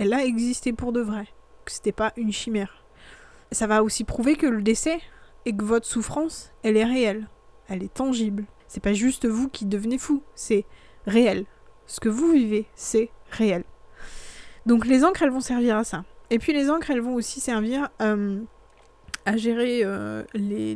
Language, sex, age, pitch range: French, female, 20-39, 205-245 Hz